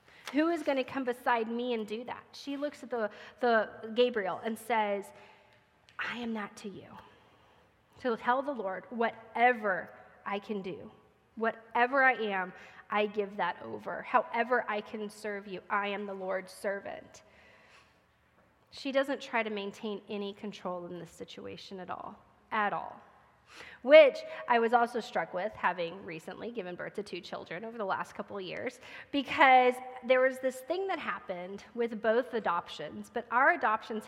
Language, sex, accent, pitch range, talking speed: English, female, American, 200-245 Hz, 165 wpm